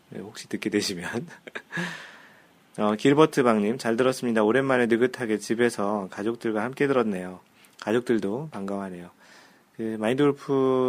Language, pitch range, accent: Korean, 105-135 Hz, native